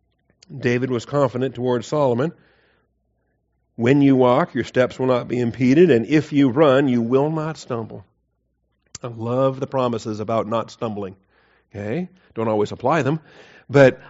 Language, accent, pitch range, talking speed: English, American, 95-140 Hz, 150 wpm